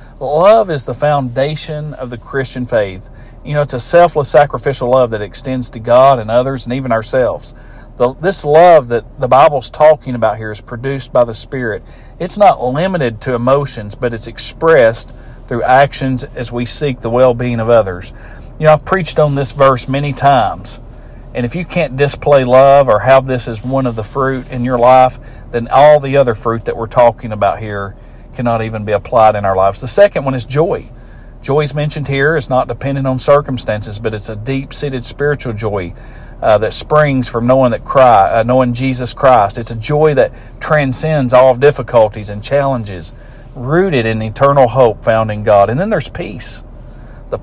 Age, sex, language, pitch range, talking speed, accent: 40-59, male, English, 115-140 Hz, 185 wpm, American